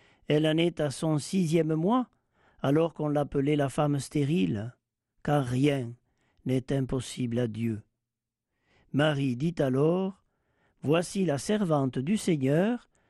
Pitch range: 115-165 Hz